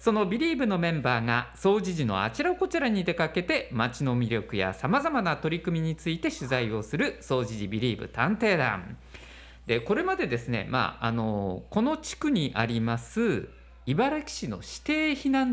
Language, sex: Japanese, male